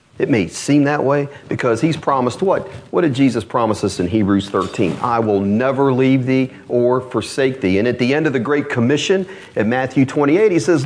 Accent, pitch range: American, 120-175 Hz